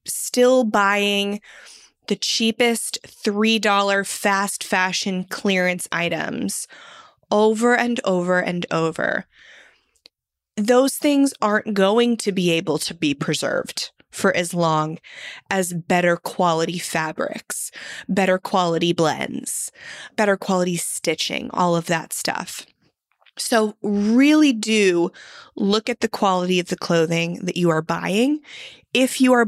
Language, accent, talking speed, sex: English, American, 120 wpm, female